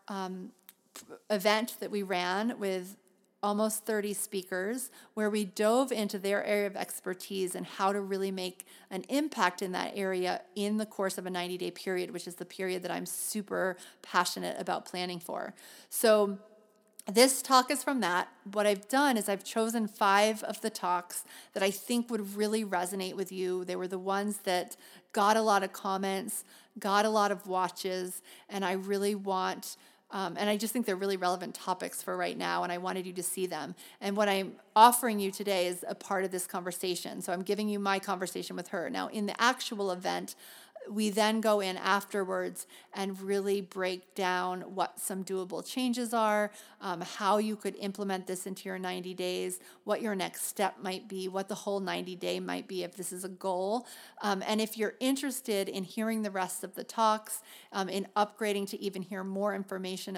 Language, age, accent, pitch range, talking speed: English, 30-49, American, 185-210 Hz, 195 wpm